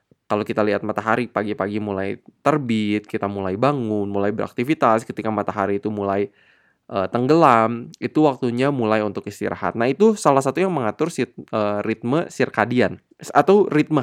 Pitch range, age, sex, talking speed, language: 115-155 Hz, 20-39, male, 150 wpm, Indonesian